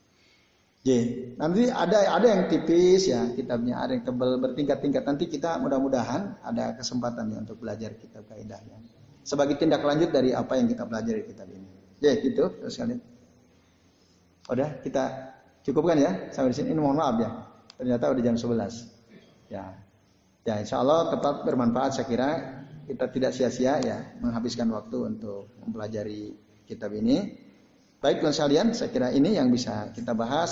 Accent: native